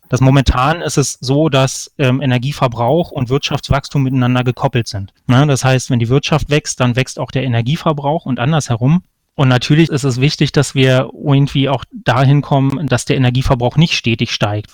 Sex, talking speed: male, 175 wpm